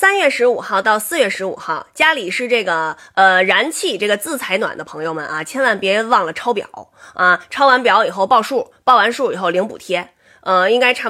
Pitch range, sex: 190-290 Hz, female